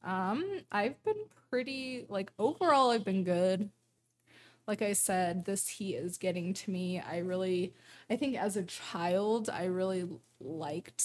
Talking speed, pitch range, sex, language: 150 wpm, 175-210 Hz, female, English